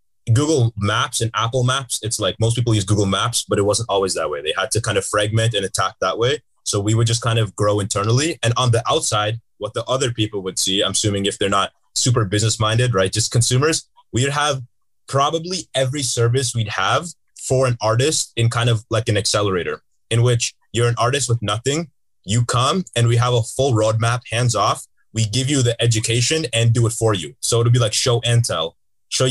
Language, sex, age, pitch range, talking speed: English, male, 20-39, 110-125 Hz, 220 wpm